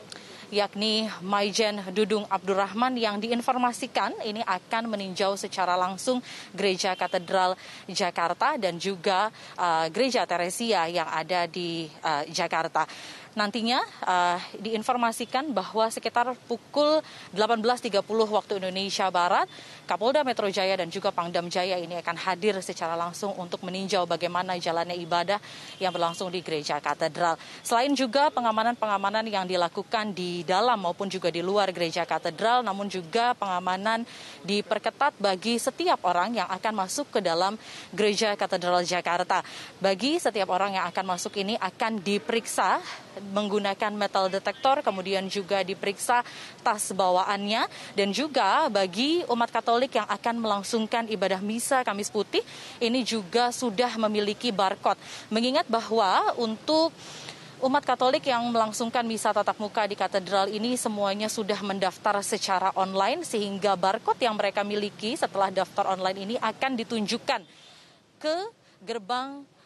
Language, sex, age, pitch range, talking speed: Indonesian, female, 30-49, 185-230 Hz, 125 wpm